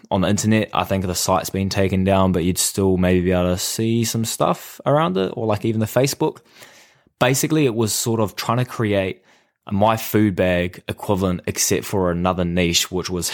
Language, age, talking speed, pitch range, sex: English, 20-39, 205 wpm, 90-105 Hz, male